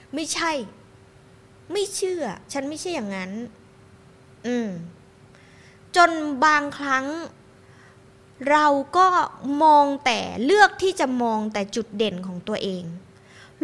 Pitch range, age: 200-325 Hz, 20-39